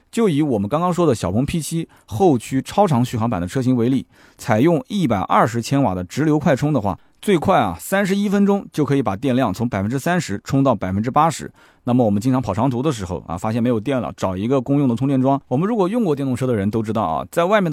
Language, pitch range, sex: Chinese, 110-155 Hz, male